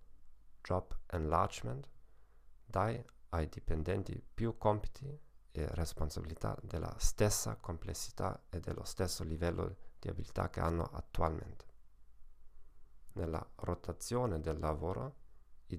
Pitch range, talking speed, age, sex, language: 80-105 Hz, 100 wpm, 40-59, male, Italian